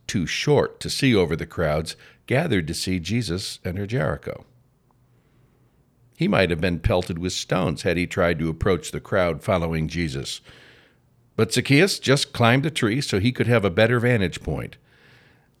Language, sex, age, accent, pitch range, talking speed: English, male, 60-79, American, 105-135 Hz, 165 wpm